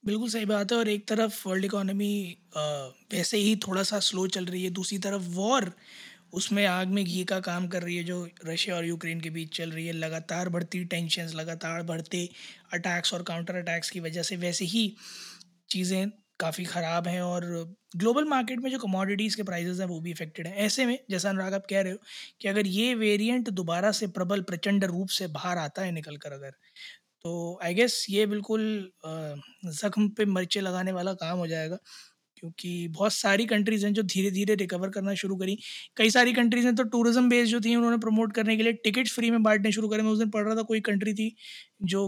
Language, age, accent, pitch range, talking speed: Hindi, 20-39, native, 175-215 Hz, 210 wpm